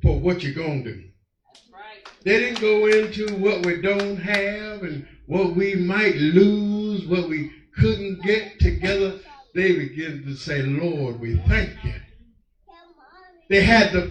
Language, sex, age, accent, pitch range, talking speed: English, male, 50-69, American, 145-215 Hz, 150 wpm